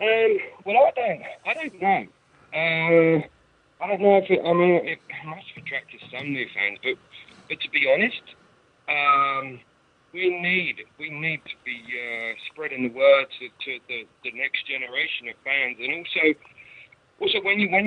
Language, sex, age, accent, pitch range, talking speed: English, male, 50-69, American, 130-200 Hz, 170 wpm